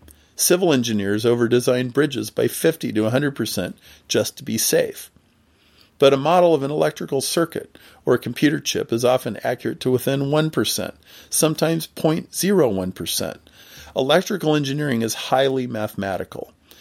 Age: 40-59